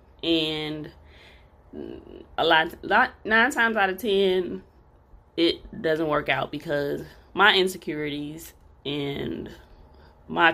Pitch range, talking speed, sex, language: 145-190 Hz, 100 wpm, female, English